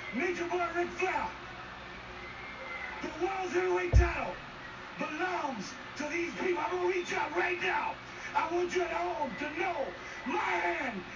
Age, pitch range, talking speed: 30-49, 260-360 Hz, 145 wpm